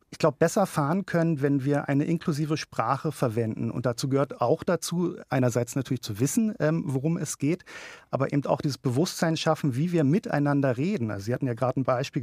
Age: 40-59